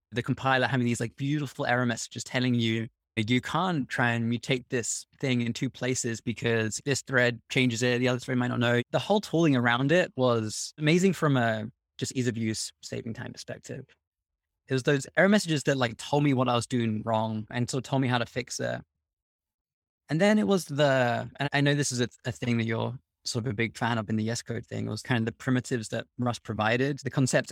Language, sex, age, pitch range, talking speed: English, male, 20-39, 115-135 Hz, 230 wpm